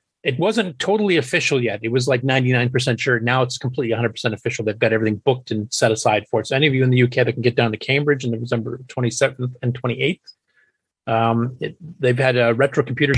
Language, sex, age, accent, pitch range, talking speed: English, male, 30-49, American, 110-135 Hz, 225 wpm